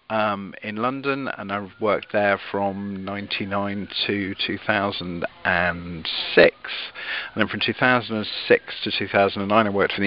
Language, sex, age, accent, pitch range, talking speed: English, male, 50-69, British, 95-105 Hz, 125 wpm